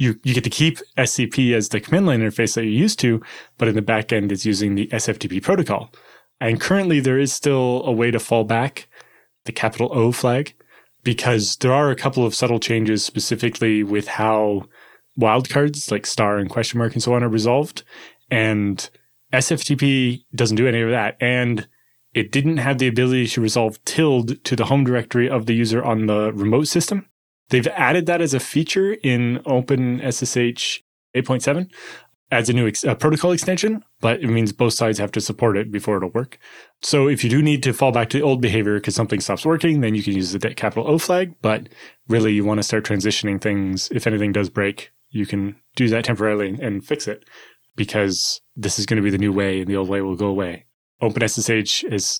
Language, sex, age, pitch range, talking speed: English, male, 20-39, 105-130 Hz, 205 wpm